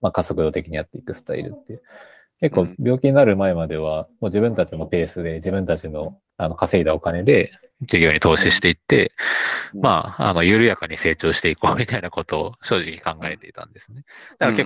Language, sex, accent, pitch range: Japanese, male, native, 80-110 Hz